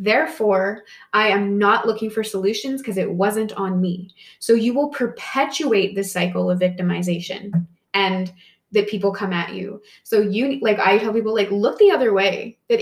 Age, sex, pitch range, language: 20-39, female, 190-225 Hz, English